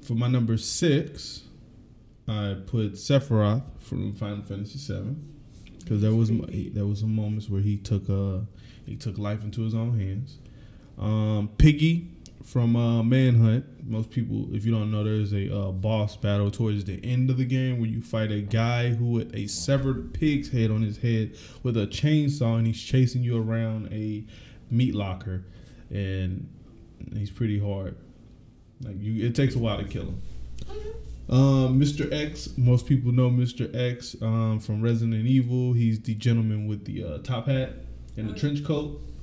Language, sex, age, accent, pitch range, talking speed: English, male, 20-39, American, 105-125 Hz, 170 wpm